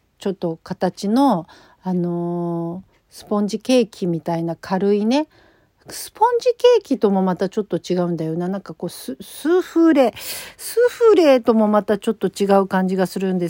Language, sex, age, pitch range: Japanese, female, 50-69, 175-230 Hz